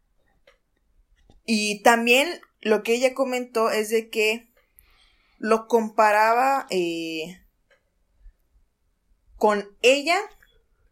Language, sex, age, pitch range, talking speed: Spanish, female, 20-39, 165-235 Hz, 75 wpm